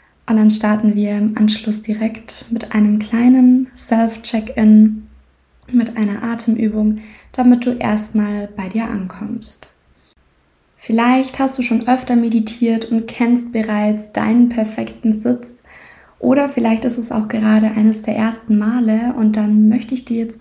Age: 20-39